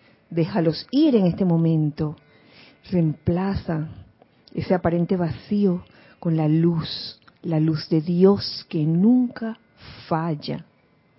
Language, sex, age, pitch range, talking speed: Spanish, female, 40-59, 155-190 Hz, 100 wpm